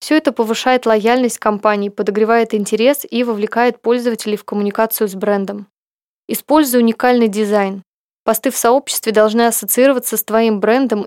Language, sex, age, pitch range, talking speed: Russian, female, 20-39, 210-245 Hz, 135 wpm